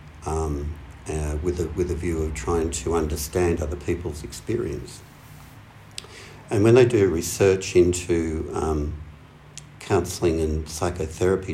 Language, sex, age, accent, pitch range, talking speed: English, male, 60-79, Australian, 80-95 Hz, 120 wpm